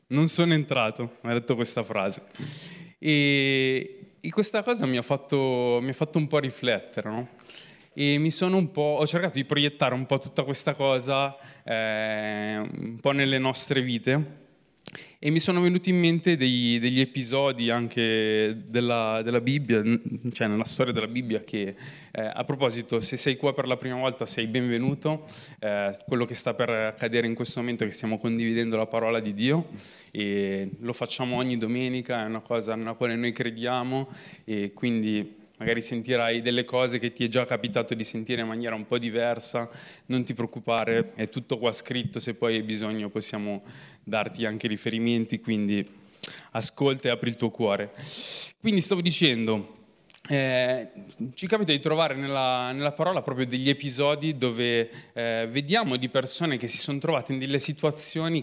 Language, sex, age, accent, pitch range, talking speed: Italian, male, 20-39, native, 115-145 Hz, 170 wpm